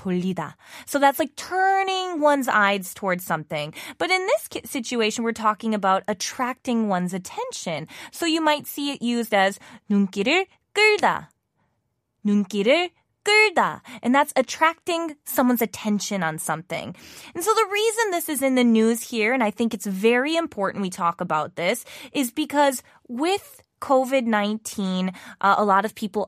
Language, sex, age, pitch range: Korean, female, 20-39, 200-300 Hz